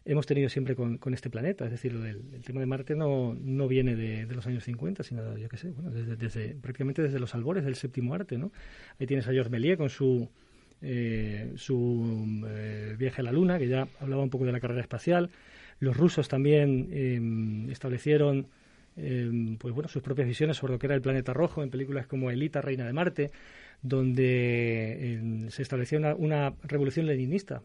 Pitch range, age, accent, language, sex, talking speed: 125-150 Hz, 40-59, Spanish, Spanish, male, 200 wpm